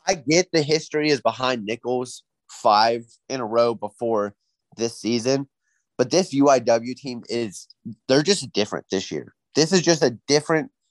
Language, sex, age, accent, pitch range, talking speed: English, male, 30-49, American, 120-165 Hz, 160 wpm